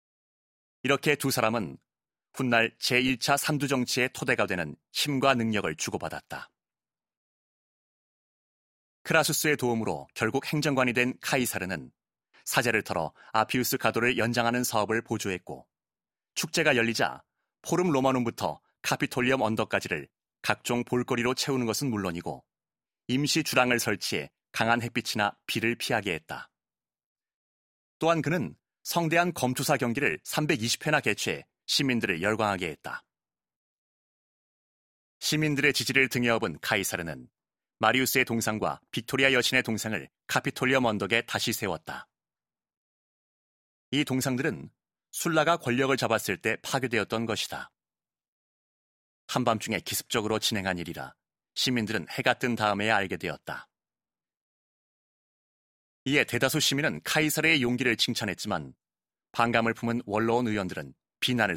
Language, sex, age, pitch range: Korean, male, 30-49, 105-130 Hz